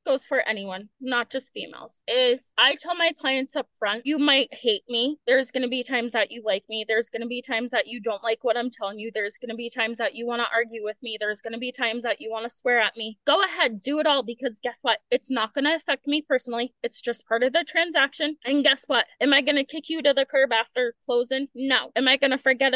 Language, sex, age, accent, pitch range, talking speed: English, female, 20-39, American, 235-275 Hz, 255 wpm